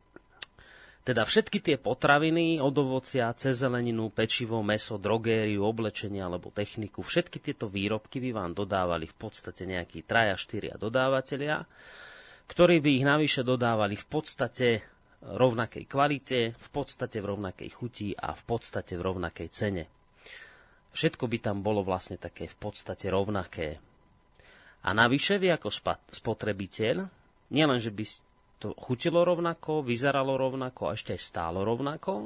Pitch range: 100-130 Hz